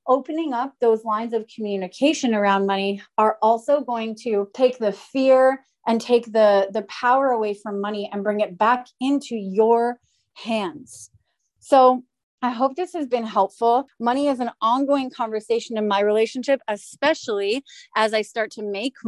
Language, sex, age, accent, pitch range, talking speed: English, female, 30-49, American, 215-270 Hz, 160 wpm